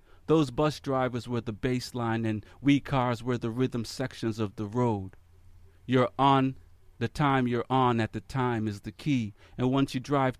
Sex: male